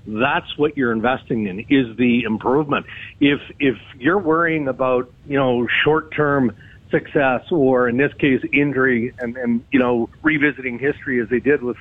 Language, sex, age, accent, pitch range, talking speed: English, male, 50-69, American, 115-145 Hz, 165 wpm